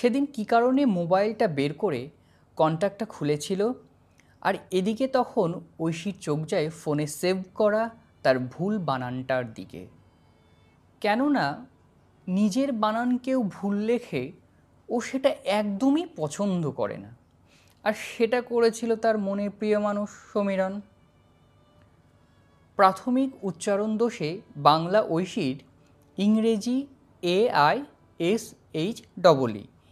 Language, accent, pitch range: Bengali, native, 160-235 Hz